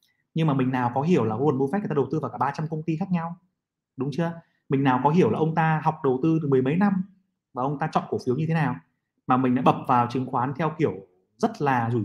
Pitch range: 125-160 Hz